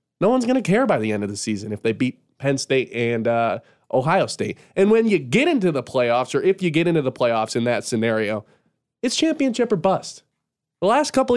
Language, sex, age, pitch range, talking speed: English, male, 20-39, 120-180 Hz, 230 wpm